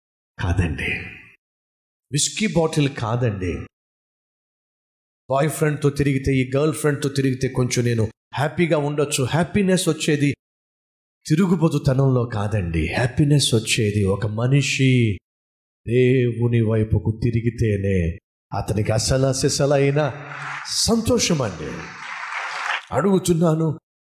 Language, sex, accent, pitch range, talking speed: Telugu, male, native, 110-165 Hz, 75 wpm